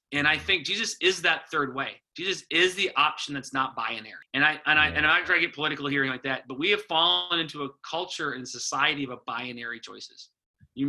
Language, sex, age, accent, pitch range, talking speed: English, male, 30-49, American, 140-210 Hz, 235 wpm